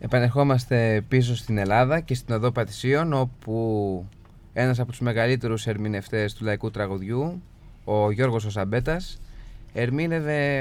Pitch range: 115-150 Hz